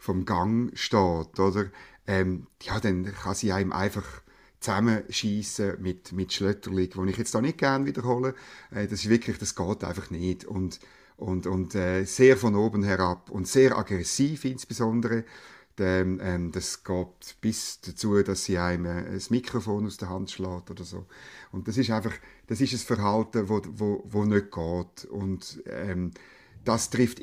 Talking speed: 170 wpm